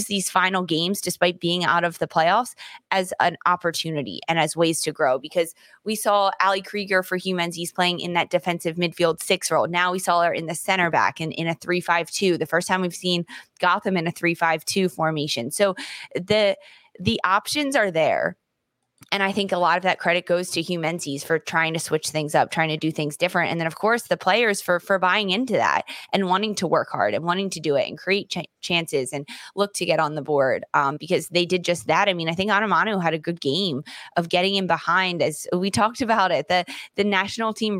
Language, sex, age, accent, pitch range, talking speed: English, female, 20-39, American, 165-195 Hz, 225 wpm